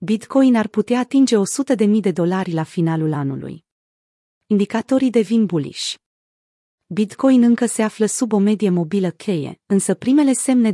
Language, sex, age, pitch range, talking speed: Romanian, female, 30-49, 180-225 Hz, 150 wpm